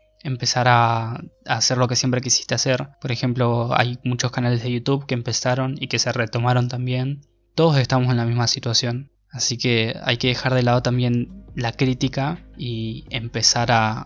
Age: 20-39